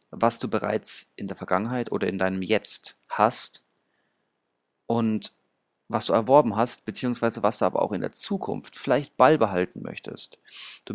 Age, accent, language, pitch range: 30-49, German, German, 95-125 Hz